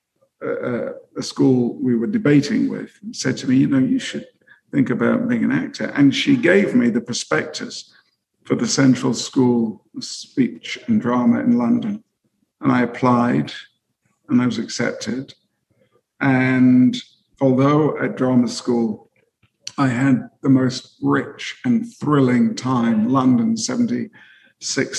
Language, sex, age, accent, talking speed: English, male, 50-69, British, 135 wpm